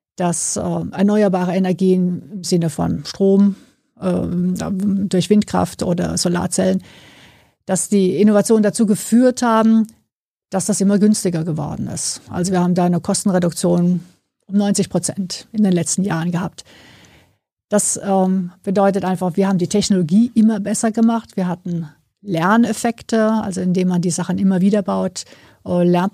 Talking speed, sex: 135 wpm, female